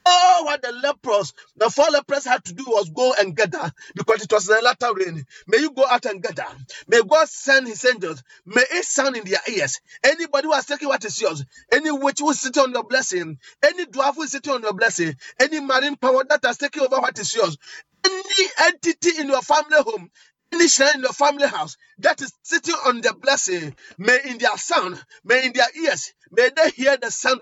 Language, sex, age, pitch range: English, male, 40-59, 225-300 Hz